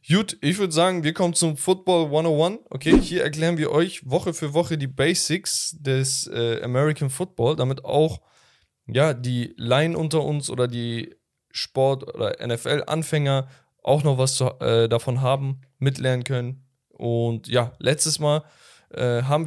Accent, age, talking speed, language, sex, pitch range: German, 10-29, 155 wpm, German, male, 120-155 Hz